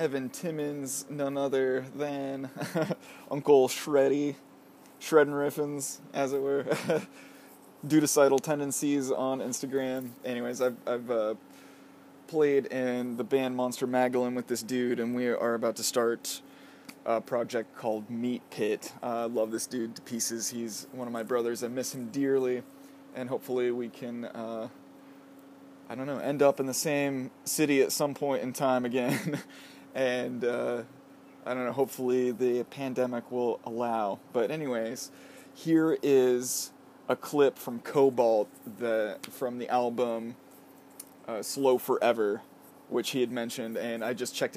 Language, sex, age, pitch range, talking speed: English, male, 20-39, 120-140 Hz, 145 wpm